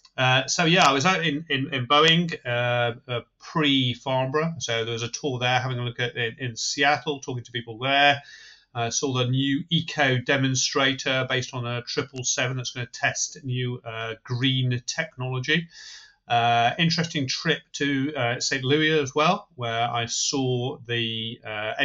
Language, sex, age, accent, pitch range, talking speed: English, male, 30-49, British, 120-145 Hz, 175 wpm